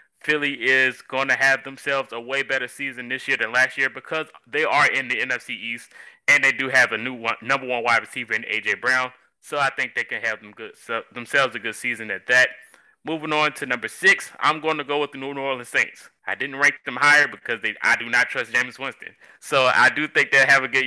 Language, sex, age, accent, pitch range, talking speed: English, male, 20-39, American, 125-145 Hz, 245 wpm